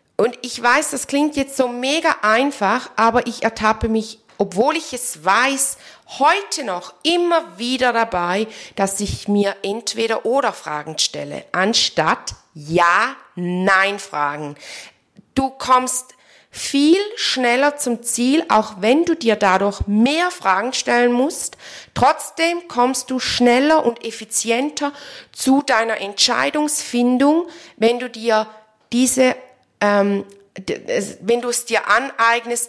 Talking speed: 120 wpm